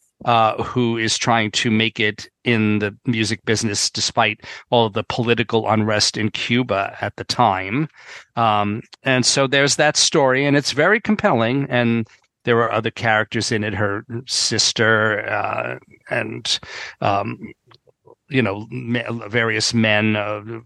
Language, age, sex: English, 40-59, male